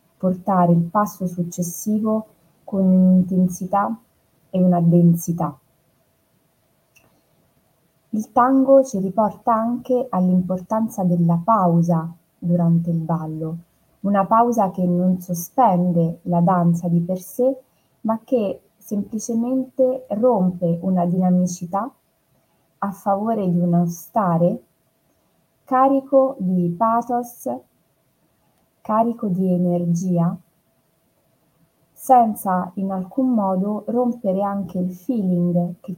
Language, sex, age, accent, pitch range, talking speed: Italian, female, 20-39, native, 175-210 Hz, 95 wpm